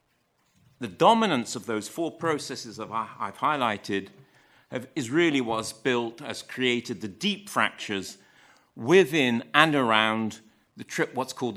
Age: 50-69